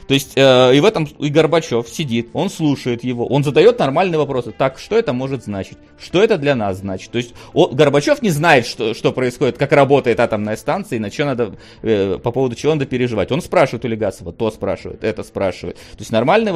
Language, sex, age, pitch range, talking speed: Russian, male, 30-49, 120-170 Hz, 215 wpm